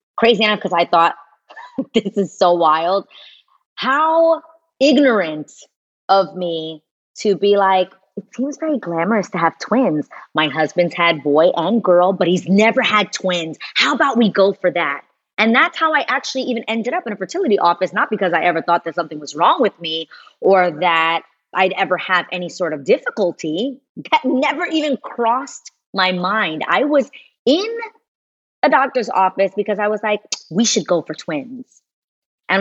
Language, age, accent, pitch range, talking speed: English, 30-49, American, 170-220 Hz, 175 wpm